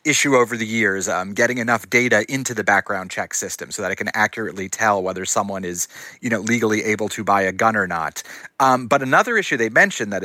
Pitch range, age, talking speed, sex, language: 105-130 Hz, 30-49, 230 wpm, male, English